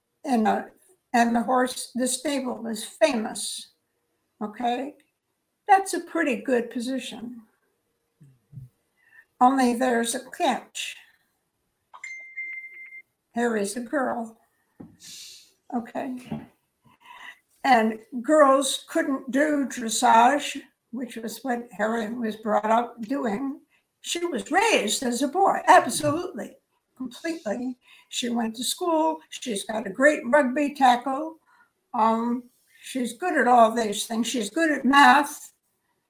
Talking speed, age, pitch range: 105 wpm, 60-79, 230-295 Hz